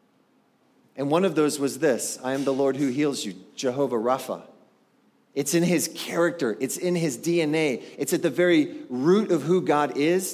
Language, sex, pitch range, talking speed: English, male, 135-185 Hz, 185 wpm